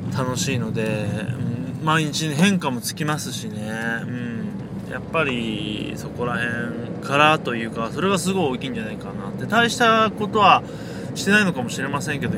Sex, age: male, 20-39